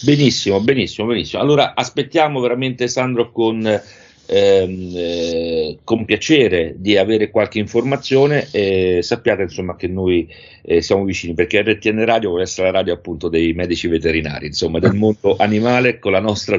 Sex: male